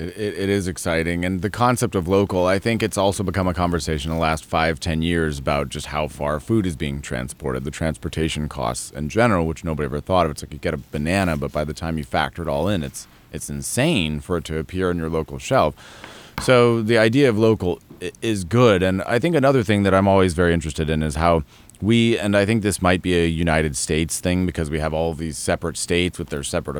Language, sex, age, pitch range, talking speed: English, male, 30-49, 80-110 Hz, 235 wpm